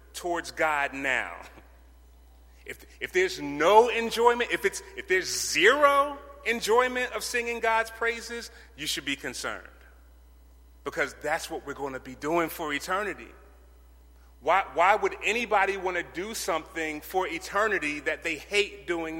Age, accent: 30-49, American